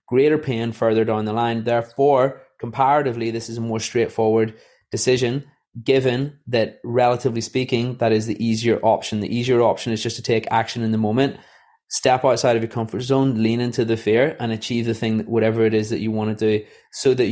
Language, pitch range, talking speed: English, 115-135 Hz, 205 wpm